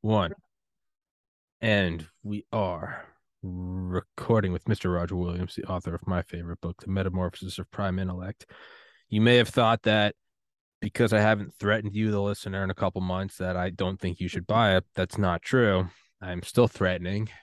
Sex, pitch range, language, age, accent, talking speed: male, 95-110 Hz, English, 20-39, American, 170 wpm